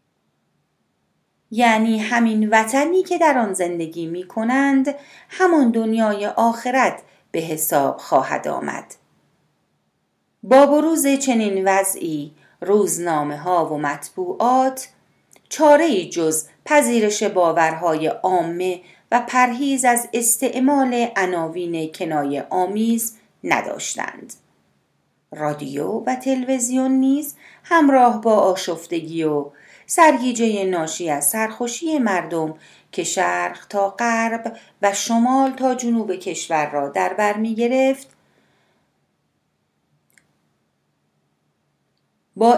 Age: 40-59